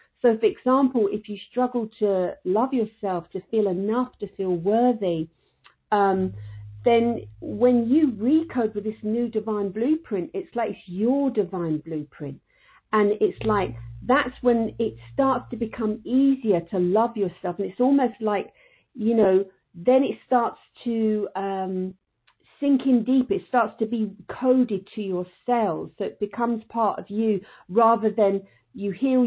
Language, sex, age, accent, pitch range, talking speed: English, female, 50-69, British, 185-230 Hz, 155 wpm